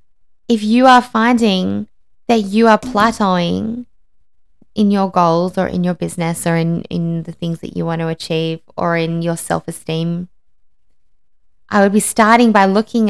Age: 20-39